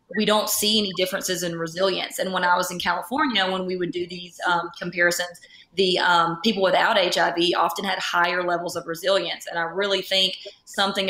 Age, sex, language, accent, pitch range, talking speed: 20-39, female, English, American, 175-200 Hz, 195 wpm